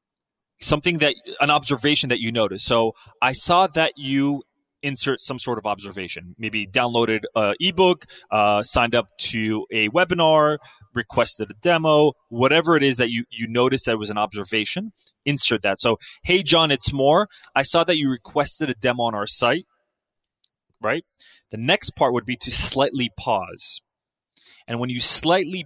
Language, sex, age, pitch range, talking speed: English, male, 30-49, 115-150 Hz, 165 wpm